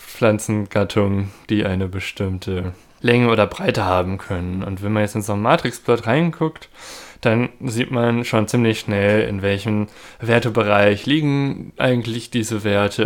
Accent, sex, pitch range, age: German, male, 100-120 Hz, 20-39